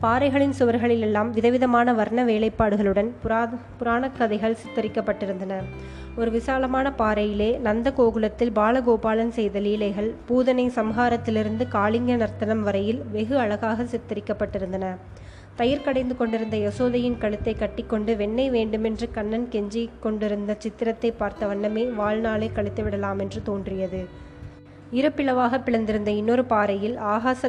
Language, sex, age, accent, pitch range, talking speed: Tamil, female, 20-39, native, 210-235 Hz, 105 wpm